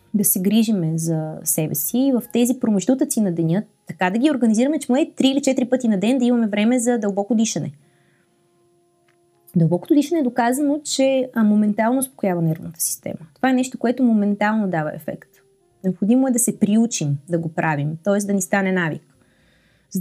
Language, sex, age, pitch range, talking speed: Bulgarian, female, 20-39, 175-245 Hz, 175 wpm